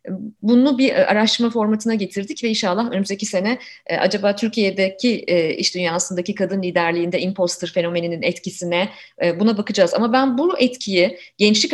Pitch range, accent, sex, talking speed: 180-235 Hz, native, female, 130 wpm